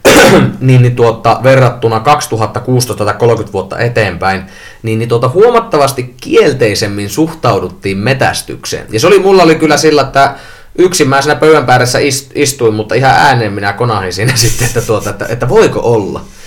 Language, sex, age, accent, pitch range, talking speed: Finnish, male, 30-49, native, 105-130 Hz, 145 wpm